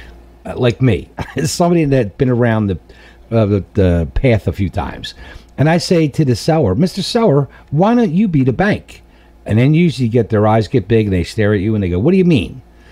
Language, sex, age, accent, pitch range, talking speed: English, male, 50-69, American, 110-155 Hz, 230 wpm